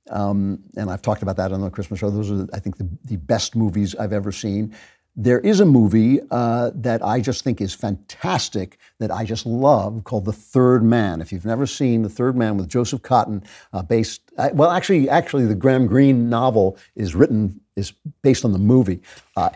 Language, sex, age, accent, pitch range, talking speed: English, male, 60-79, American, 100-130 Hz, 210 wpm